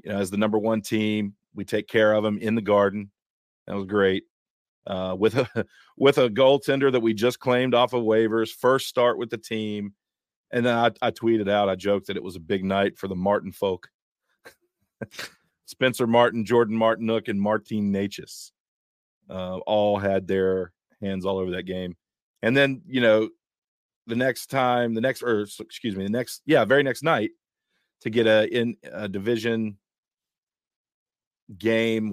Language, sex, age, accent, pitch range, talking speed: English, male, 40-59, American, 100-120 Hz, 180 wpm